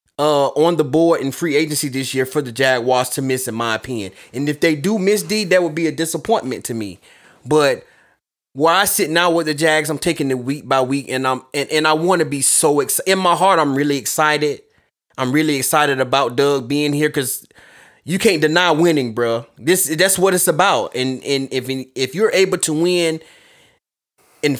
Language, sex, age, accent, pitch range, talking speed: English, male, 20-39, American, 135-170 Hz, 210 wpm